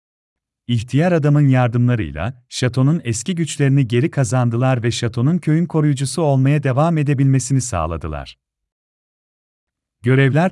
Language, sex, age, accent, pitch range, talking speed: Turkish, male, 40-59, native, 90-145 Hz, 95 wpm